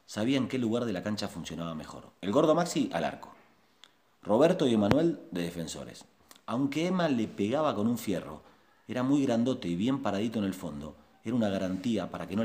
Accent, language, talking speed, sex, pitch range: Argentinian, Spanish, 200 wpm, male, 85-120 Hz